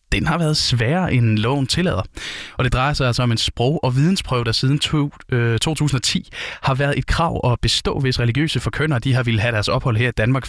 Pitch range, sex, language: 115-145 Hz, male, Danish